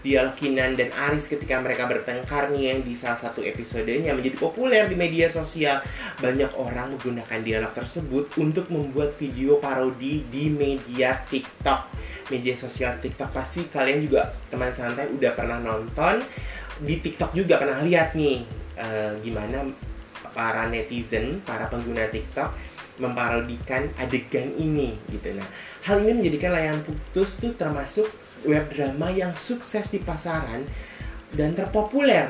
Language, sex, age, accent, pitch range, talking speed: Indonesian, male, 20-39, native, 120-155 Hz, 135 wpm